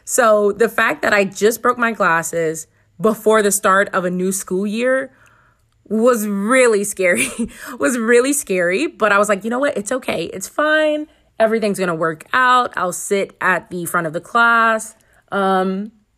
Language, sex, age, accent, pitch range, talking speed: English, female, 30-49, American, 190-255 Hz, 175 wpm